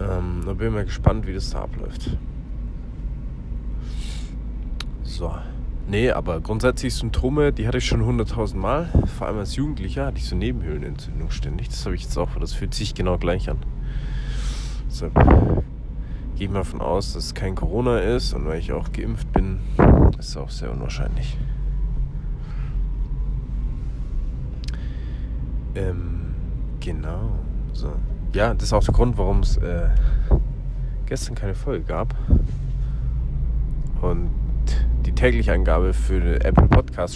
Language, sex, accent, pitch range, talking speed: German, male, German, 70-110 Hz, 145 wpm